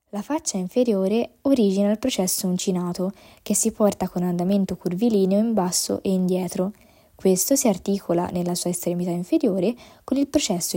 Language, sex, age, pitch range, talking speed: Italian, female, 20-39, 180-230 Hz, 150 wpm